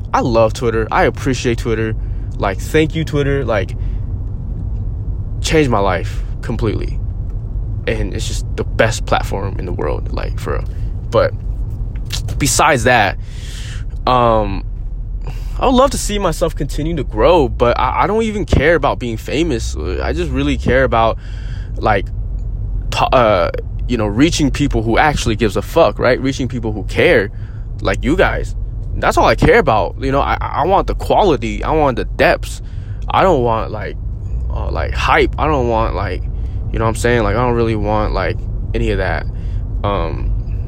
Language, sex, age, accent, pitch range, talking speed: English, male, 20-39, American, 100-115 Hz, 170 wpm